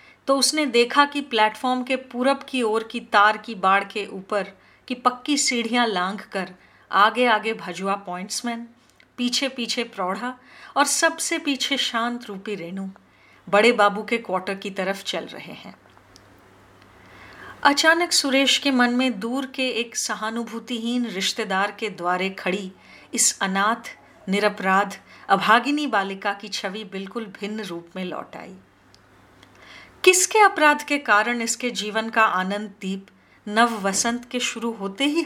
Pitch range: 190-240 Hz